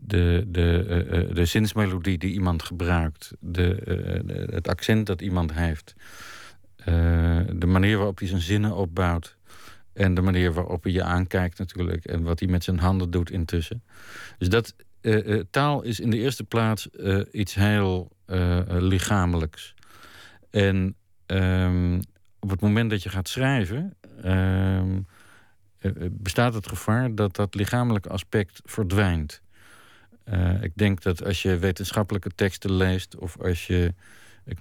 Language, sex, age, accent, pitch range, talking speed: Dutch, male, 50-69, Dutch, 90-105 Hz, 125 wpm